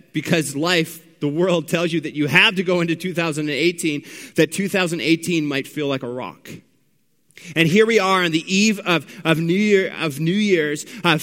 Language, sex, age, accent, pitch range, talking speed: English, male, 30-49, American, 165-205 Hz, 185 wpm